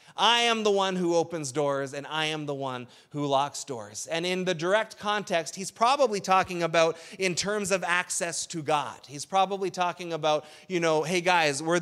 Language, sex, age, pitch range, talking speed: English, male, 30-49, 145-190 Hz, 200 wpm